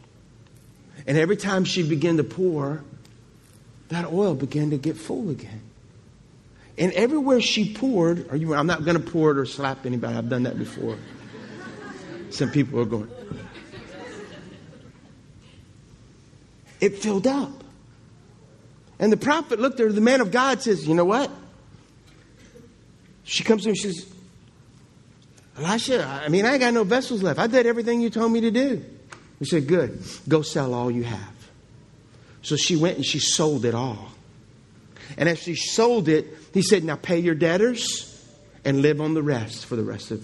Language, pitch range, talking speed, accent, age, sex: English, 125-190 Hz, 165 wpm, American, 50-69, male